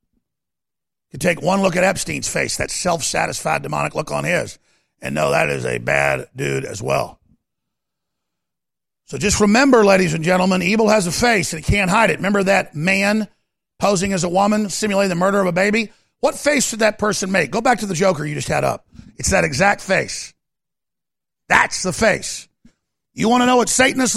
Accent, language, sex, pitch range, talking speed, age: American, English, male, 185-235 Hz, 195 wpm, 50-69